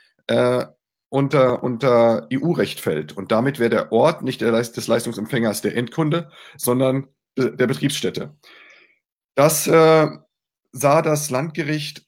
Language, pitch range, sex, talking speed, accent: German, 110-140 Hz, male, 120 wpm, German